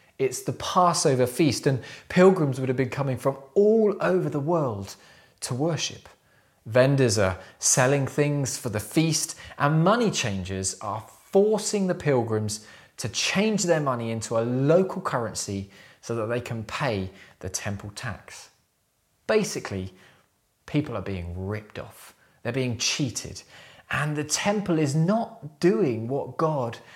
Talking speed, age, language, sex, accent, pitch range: 140 wpm, 20-39, English, male, British, 115-165 Hz